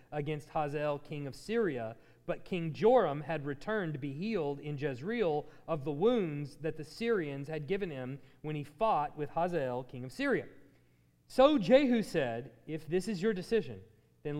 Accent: American